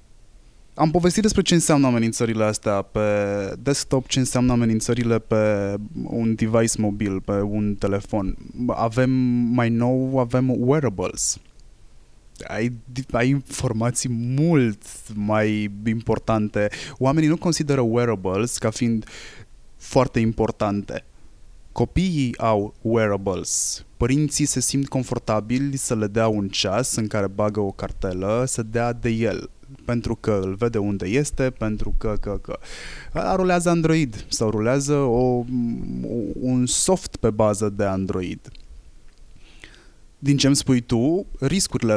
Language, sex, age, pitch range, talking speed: Romanian, male, 20-39, 105-135 Hz, 125 wpm